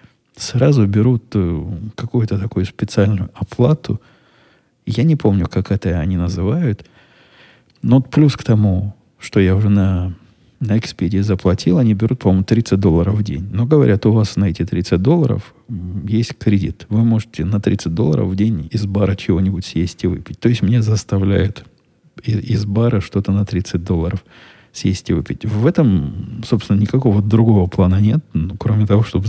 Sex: male